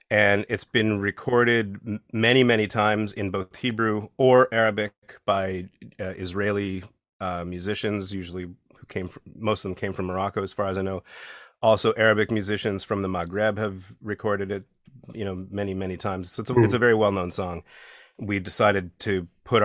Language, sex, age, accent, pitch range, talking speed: English, male, 30-49, American, 95-105 Hz, 180 wpm